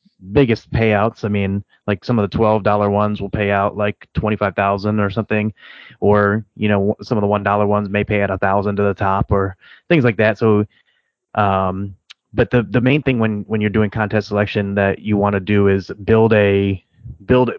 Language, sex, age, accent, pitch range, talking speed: English, male, 30-49, American, 100-110 Hz, 205 wpm